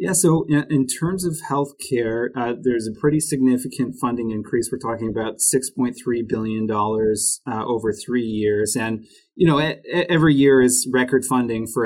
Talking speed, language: 170 wpm, English